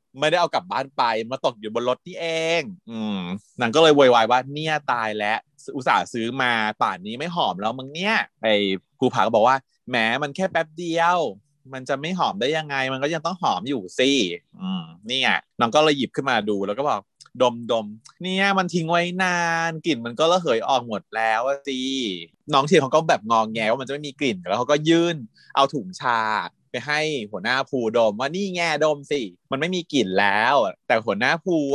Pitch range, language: 125-170 Hz, Thai